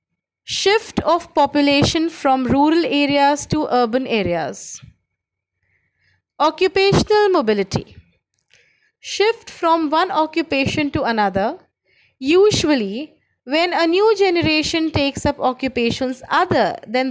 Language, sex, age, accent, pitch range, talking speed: English, female, 20-39, Indian, 260-330 Hz, 95 wpm